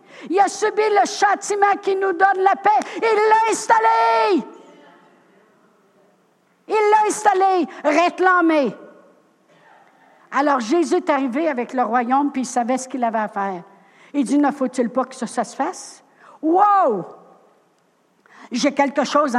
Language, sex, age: French, female, 60-79